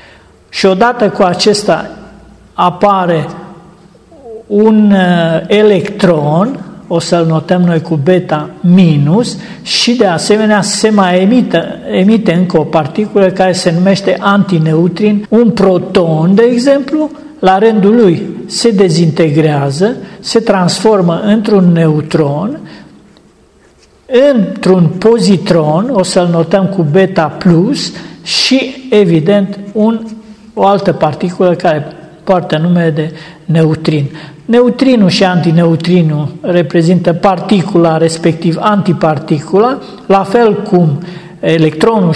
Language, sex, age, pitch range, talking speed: Romanian, male, 50-69, 160-200 Hz, 100 wpm